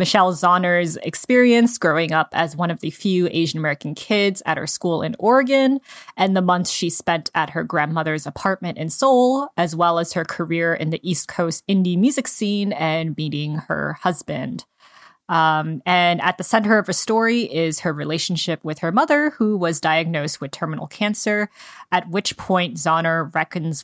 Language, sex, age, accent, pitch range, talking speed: English, female, 20-39, American, 160-195 Hz, 175 wpm